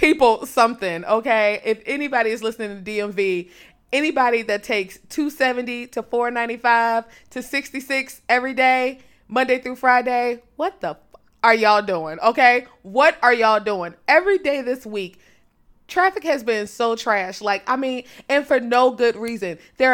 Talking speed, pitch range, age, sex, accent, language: 155 wpm, 195-245 Hz, 20-39, female, American, English